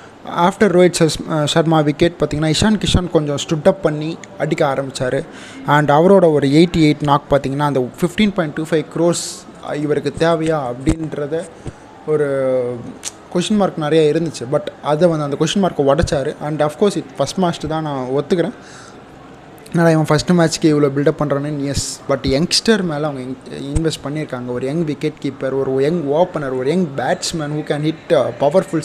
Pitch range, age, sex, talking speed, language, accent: 145-170 Hz, 20-39, male, 160 wpm, Tamil, native